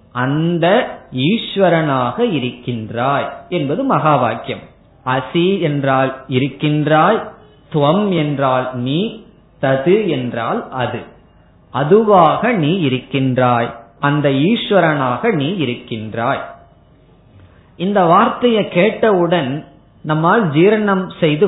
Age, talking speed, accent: 30-49, 75 wpm, native